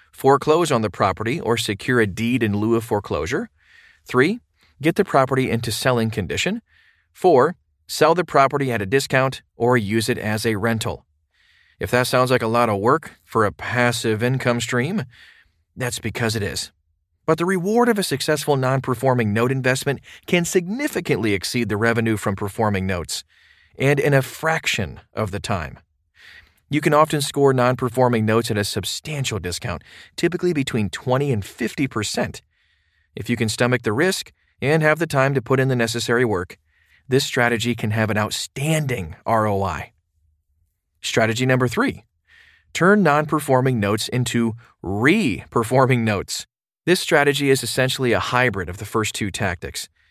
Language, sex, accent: English, male, American